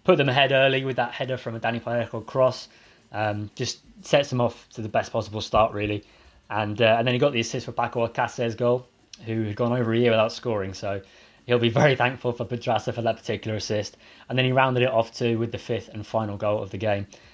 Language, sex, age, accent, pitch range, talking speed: English, male, 20-39, British, 105-120 Hz, 240 wpm